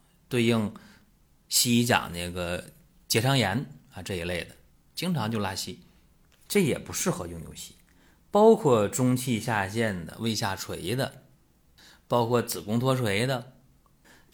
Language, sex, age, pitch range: Chinese, male, 30-49, 95-125 Hz